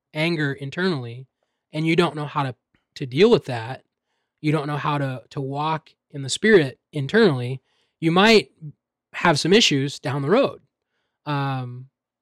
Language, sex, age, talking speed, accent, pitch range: English, male, 20-39, 155 wpm, American, 140-165 Hz